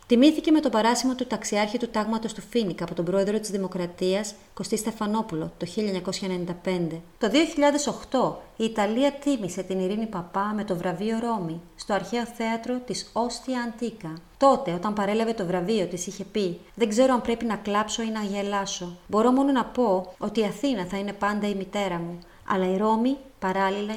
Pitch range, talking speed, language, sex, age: 185-230 Hz, 180 wpm, Greek, female, 30-49